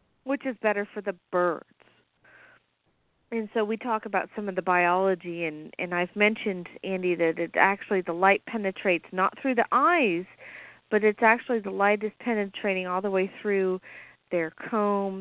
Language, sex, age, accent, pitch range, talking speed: English, female, 40-59, American, 185-240 Hz, 170 wpm